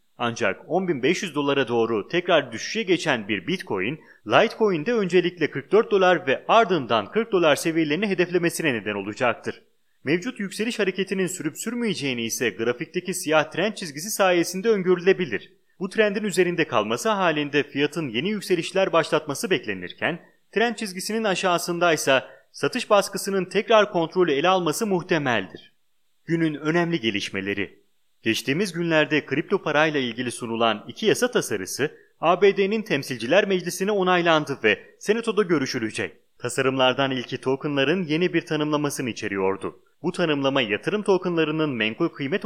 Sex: male